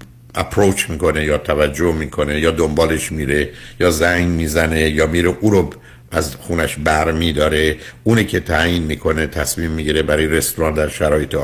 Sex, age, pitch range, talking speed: male, 60-79, 80-100 Hz, 150 wpm